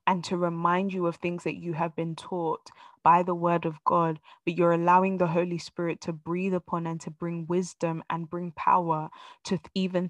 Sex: female